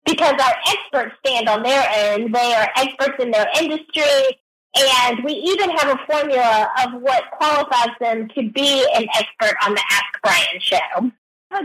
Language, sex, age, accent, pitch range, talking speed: English, female, 40-59, American, 245-335 Hz, 170 wpm